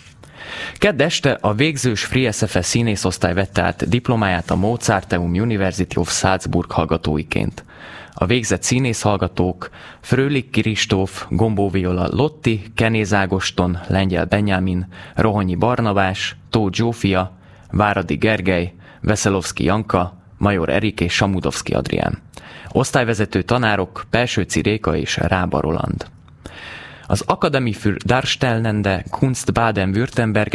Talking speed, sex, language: 100 wpm, male, Hungarian